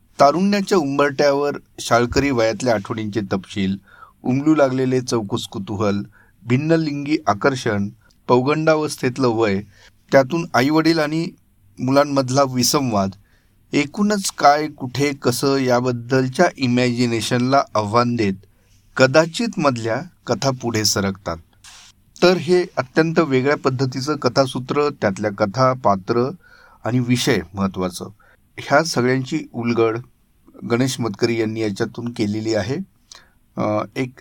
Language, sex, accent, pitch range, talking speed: Marathi, male, native, 110-140 Hz, 95 wpm